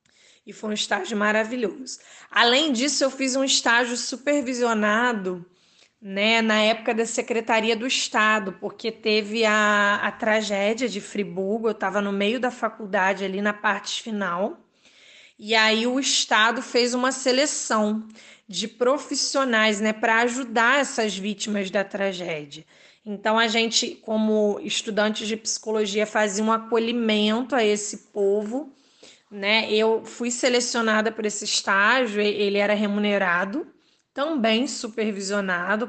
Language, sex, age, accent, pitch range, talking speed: Portuguese, female, 20-39, Brazilian, 205-240 Hz, 130 wpm